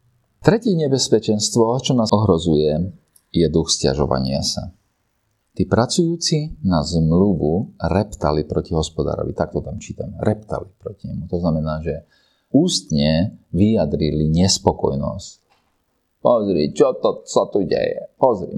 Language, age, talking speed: Slovak, 40-59, 115 wpm